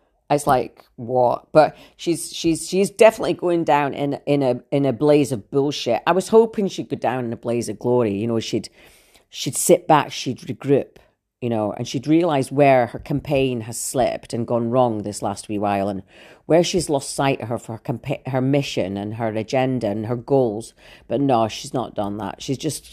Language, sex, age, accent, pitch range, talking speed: English, female, 40-59, British, 115-155 Hz, 210 wpm